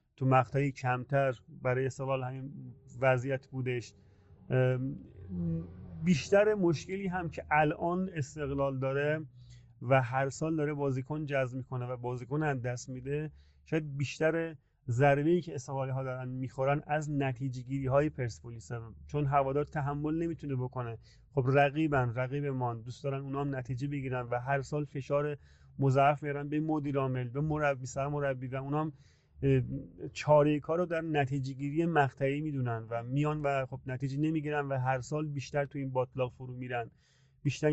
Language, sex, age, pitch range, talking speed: Persian, male, 30-49, 130-150 Hz, 150 wpm